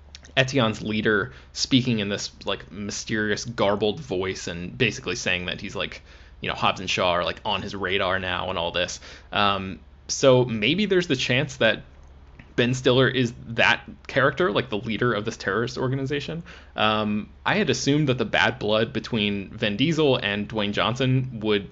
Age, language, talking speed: 20-39, English, 175 wpm